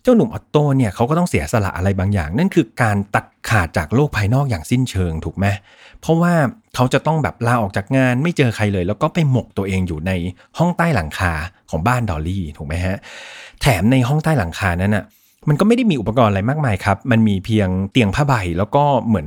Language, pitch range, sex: Thai, 95-140 Hz, male